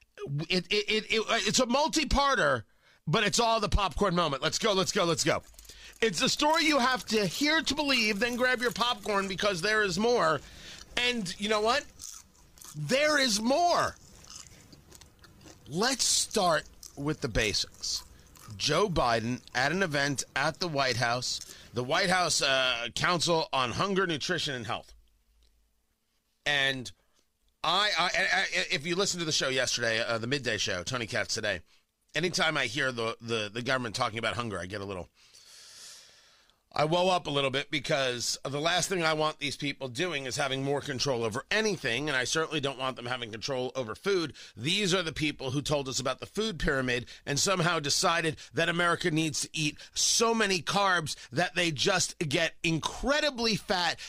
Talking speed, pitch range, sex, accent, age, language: 170 wpm, 135-215 Hz, male, American, 40-59, English